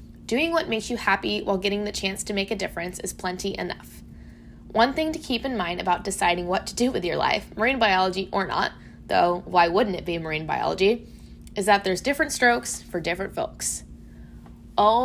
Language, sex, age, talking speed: English, female, 10-29, 200 wpm